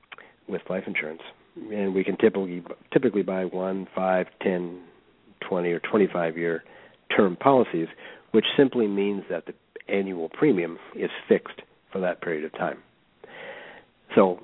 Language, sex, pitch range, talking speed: English, male, 90-110 Hz, 135 wpm